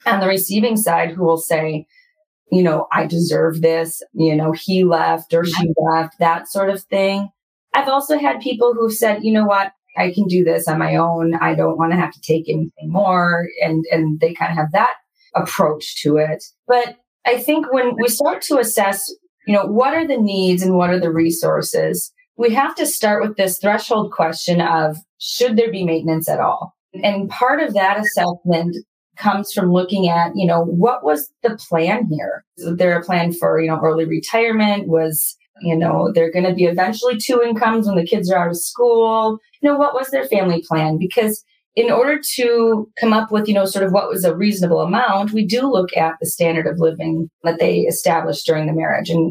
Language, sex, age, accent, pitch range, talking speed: English, female, 30-49, American, 165-225 Hz, 210 wpm